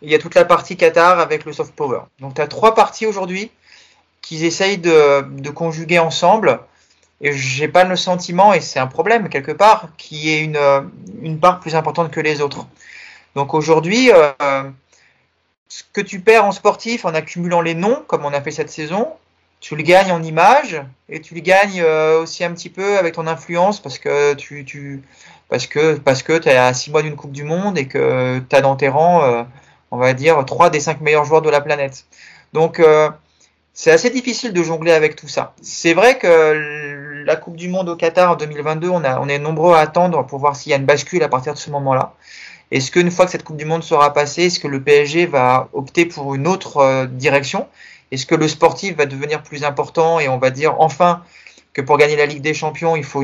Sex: male